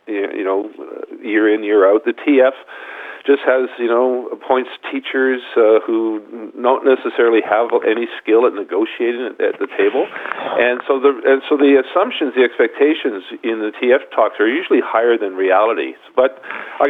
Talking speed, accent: 165 wpm, American